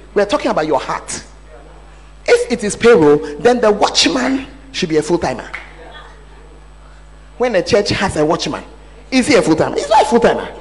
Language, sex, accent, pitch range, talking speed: English, male, Nigerian, 210-330 Hz, 170 wpm